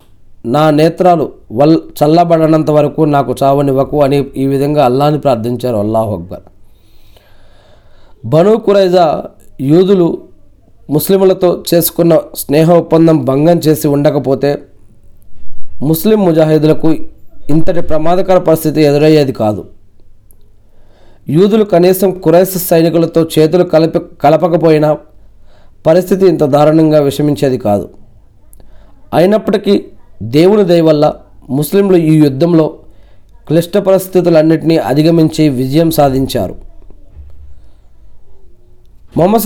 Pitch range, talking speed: 105-165 Hz, 85 wpm